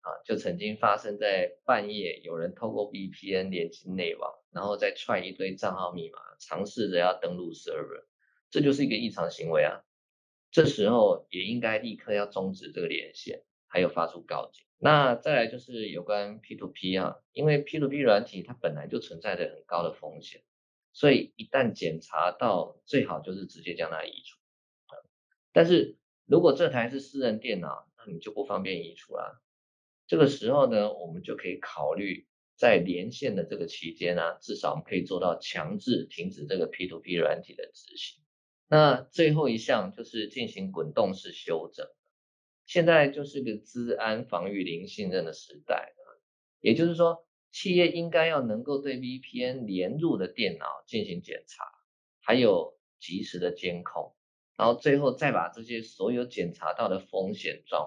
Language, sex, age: Chinese, male, 20-39